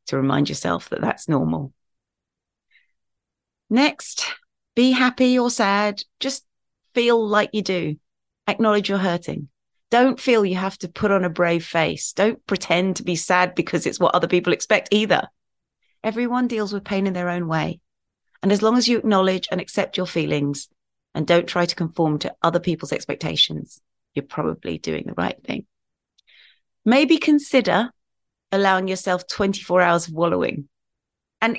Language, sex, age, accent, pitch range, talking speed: English, female, 30-49, British, 170-220 Hz, 160 wpm